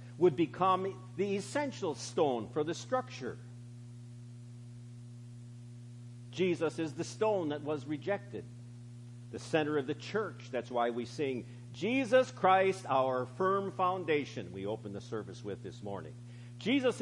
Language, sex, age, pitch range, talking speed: English, male, 50-69, 120-155 Hz, 130 wpm